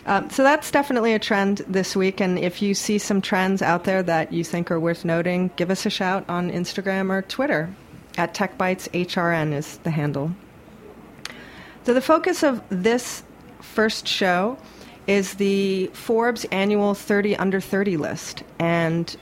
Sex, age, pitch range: female, 30-49, 165-200 Hz